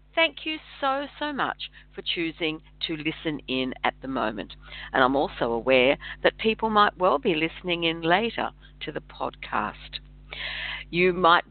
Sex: female